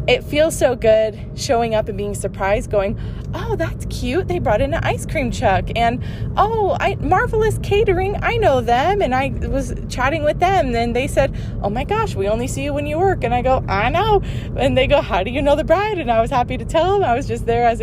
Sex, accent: female, American